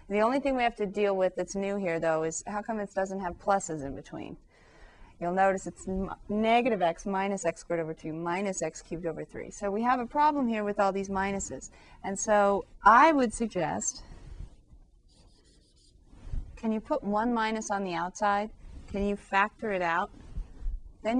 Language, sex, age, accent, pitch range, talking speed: English, female, 30-49, American, 175-225 Hz, 185 wpm